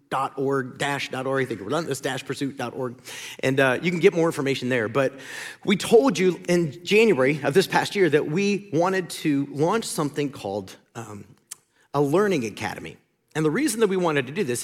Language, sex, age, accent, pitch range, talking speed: English, male, 40-59, American, 140-195 Hz, 200 wpm